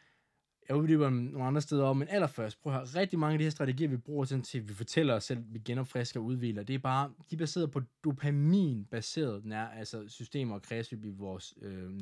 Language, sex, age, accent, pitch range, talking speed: Danish, male, 20-39, native, 125-180 Hz, 225 wpm